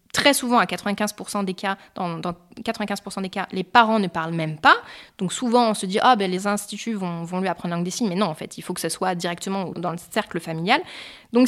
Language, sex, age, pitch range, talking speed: French, female, 20-39, 185-245 Hz, 255 wpm